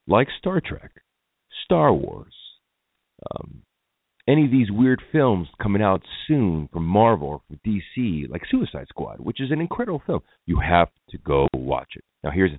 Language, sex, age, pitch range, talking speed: English, male, 40-59, 75-115 Hz, 170 wpm